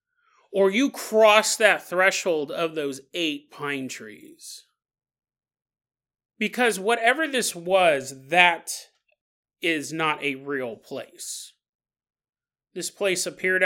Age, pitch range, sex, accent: 30-49, 160-240 Hz, male, American